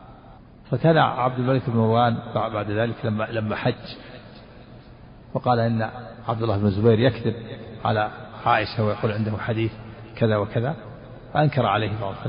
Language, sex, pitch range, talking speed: Arabic, male, 110-130 Hz, 130 wpm